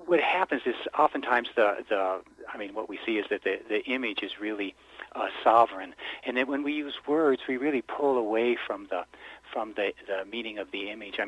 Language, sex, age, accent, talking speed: English, male, 60-79, American, 215 wpm